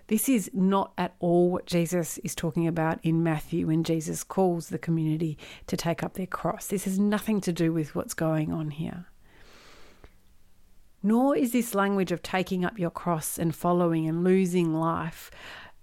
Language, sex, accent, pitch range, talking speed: English, female, Australian, 170-195 Hz, 175 wpm